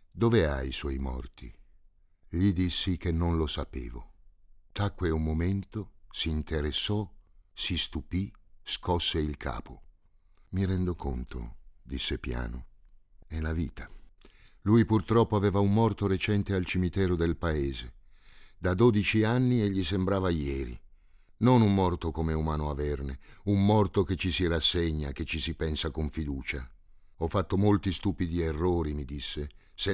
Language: Italian